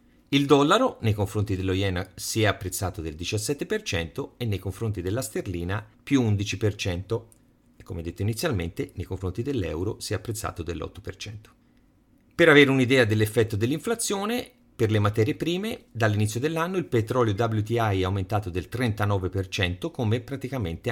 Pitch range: 95-125 Hz